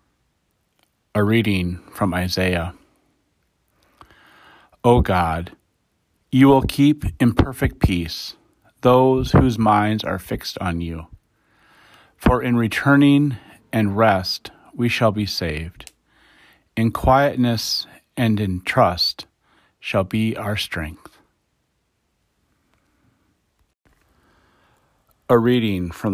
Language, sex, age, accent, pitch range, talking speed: English, male, 40-59, American, 90-115 Hz, 90 wpm